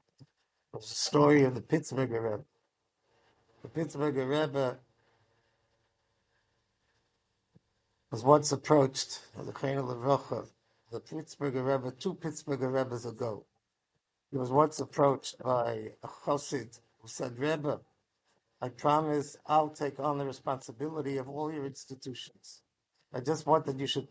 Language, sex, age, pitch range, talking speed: English, male, 60-79, 115-150 Hz, 125 wpm